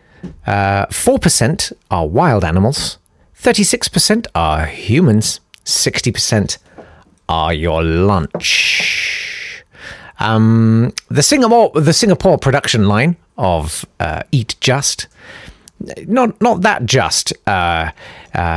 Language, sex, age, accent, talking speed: English, male, 40-59, British, 95 wpm